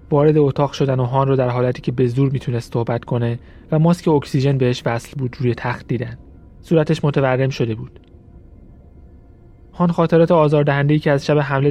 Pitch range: 120-150 Hz